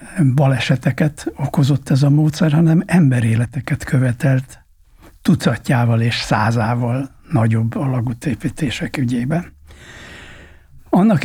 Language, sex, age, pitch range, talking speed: Hungarian, male, 60-79, 130-155 Hz, 80 wpm